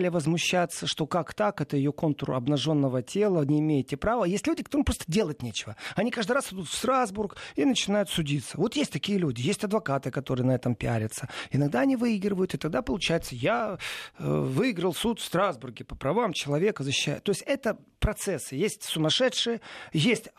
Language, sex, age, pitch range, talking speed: Russian, male, 40-59, 145-205 Hz, 175 wpm